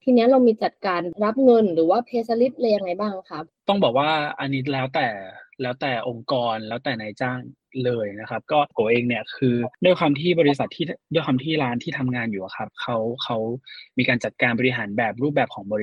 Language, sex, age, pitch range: Thai, male, 20-39, 115-145 Hz